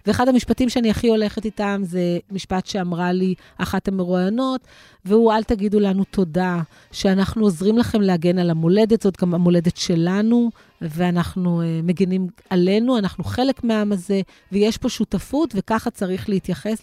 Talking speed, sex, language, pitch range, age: 145 wpm, female, Hebrew, 180-230 Hz, 30-49